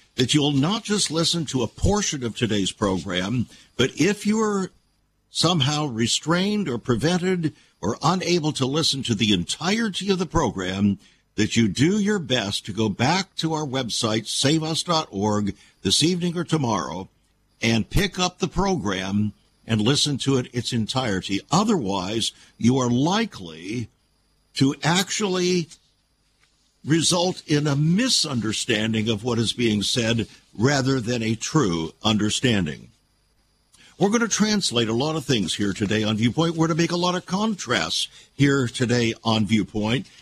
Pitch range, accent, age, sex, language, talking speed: 110-165 Hz, American, 60-79, male, English, 150 wpm